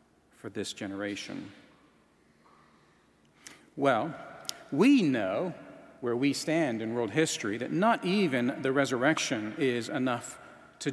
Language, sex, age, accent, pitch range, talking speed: English, male, 40-59, American, 120-175 Hz, 110 wpm